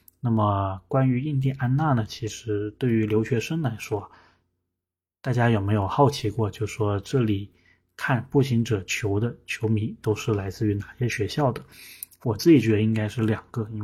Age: 20-39